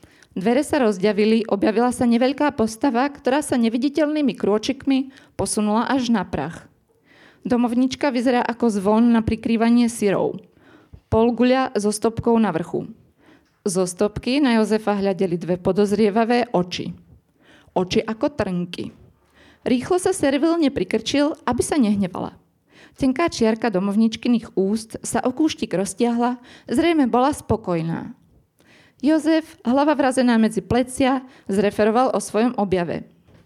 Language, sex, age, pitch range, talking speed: Slovak, female, 20-39, 215-265 Hz, 120 wpm